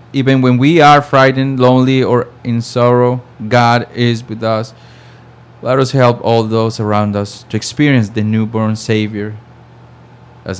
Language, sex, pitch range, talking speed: English, male, 110-130 Hz, 145 wpm